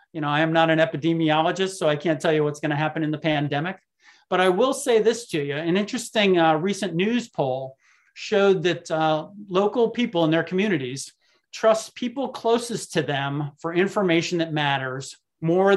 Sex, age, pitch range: male, 40-59, 150-190 Hz